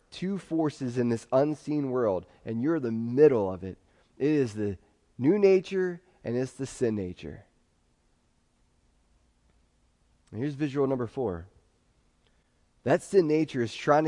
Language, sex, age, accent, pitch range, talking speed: English, male, 20-39, American, 110-150 Hz, 135 wpm